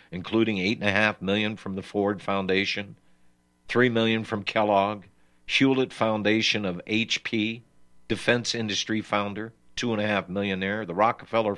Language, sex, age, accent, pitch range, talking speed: English, male, 60-79, American, 80-115 Hz, 145 wpm